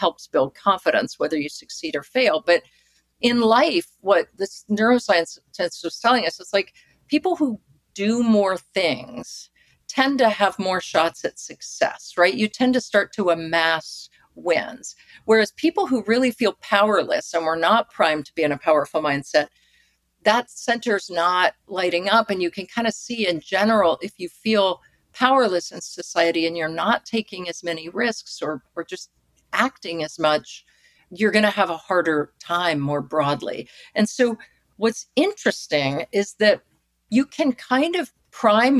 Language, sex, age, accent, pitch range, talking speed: English, female, 50-69, American, 165-230 Hz, 165 wpm